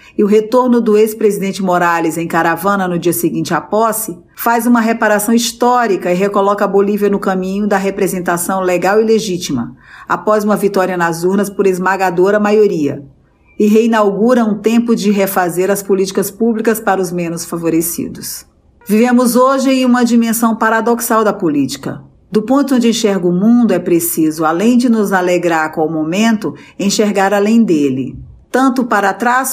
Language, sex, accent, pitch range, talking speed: Portuguese, female, Brazilian, 180-230 Hz, 160 wpm